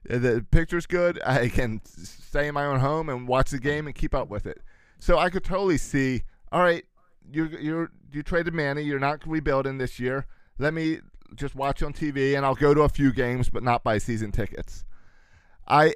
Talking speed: 205 wpm